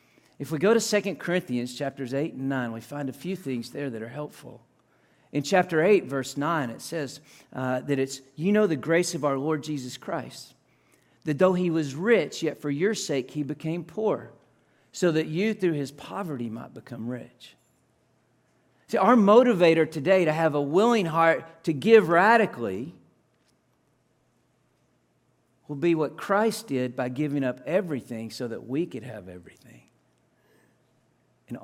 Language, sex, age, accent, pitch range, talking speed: English, male, 50-69, American, 125-170 Hz, 165 wpm